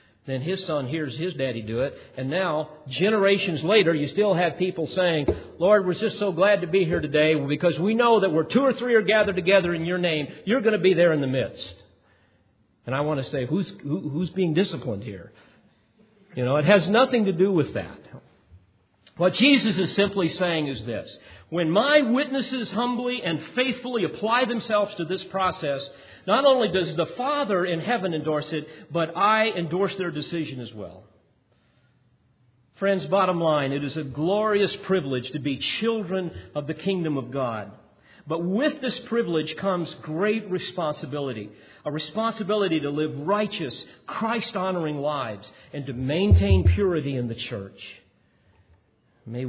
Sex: male